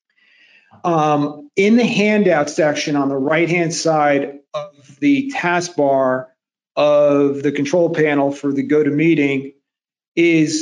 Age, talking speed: 40-59, 115 wpm